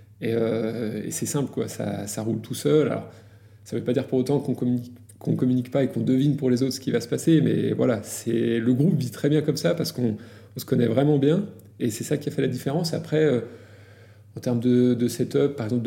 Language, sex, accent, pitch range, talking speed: French, male, French, 110-135 Hz, 260 wpm